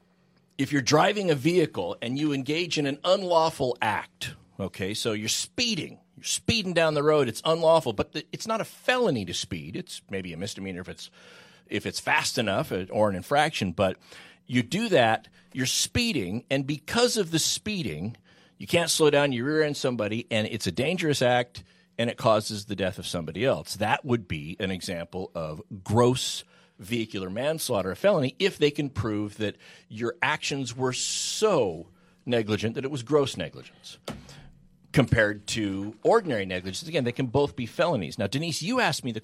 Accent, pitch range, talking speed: American, 105-155 Hz, 180 wpm